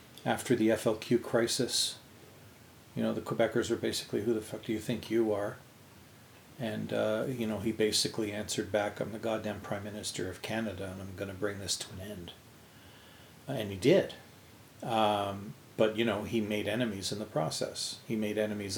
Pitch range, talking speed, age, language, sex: 110-130 Hz, 185 wpm, 40-59, English, male